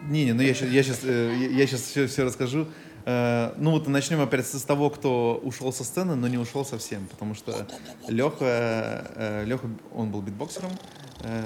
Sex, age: male, 20-39